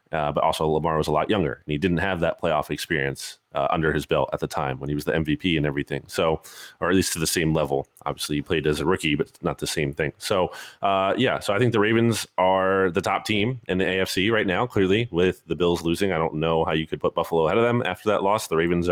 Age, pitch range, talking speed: 30-49, 85-110 Hz, 275 wpm